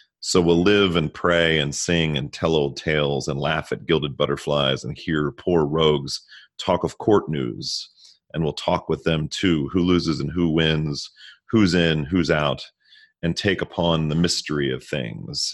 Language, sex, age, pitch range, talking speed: English, male, 30-49, 70-85 Hz, 180 wpm